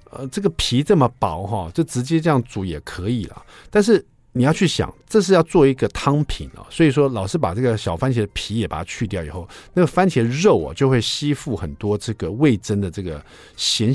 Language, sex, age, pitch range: Chinese, male, 50-69, 100-150 Hz